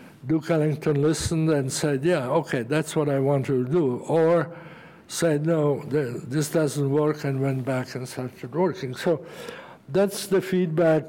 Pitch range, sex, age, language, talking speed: 140-160 Hz, male, 60-79, English, 155 wpm